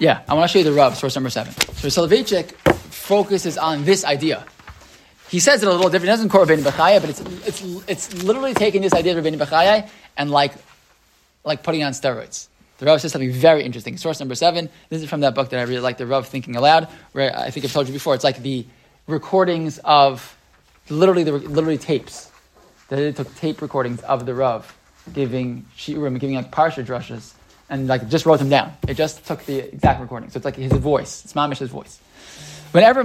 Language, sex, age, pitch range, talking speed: English, male, 20-39, 135-175 Hz, 215 wpm